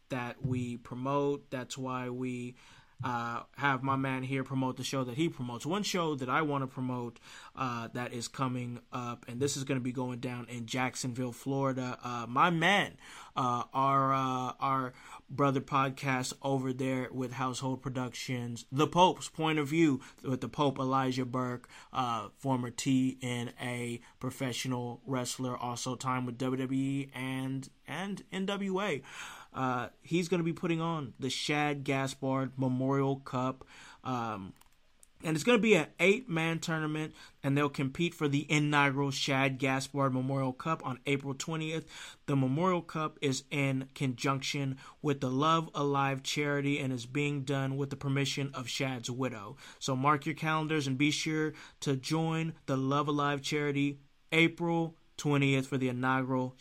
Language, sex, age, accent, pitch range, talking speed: English, male, 20-39, American, 130-145 Hz, 160 wpm